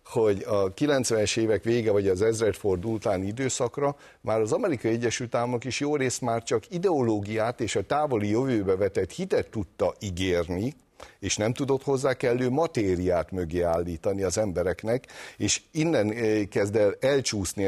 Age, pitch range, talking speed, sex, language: 60-79, 95-125 Hz, 150 wpm, male, Hungarian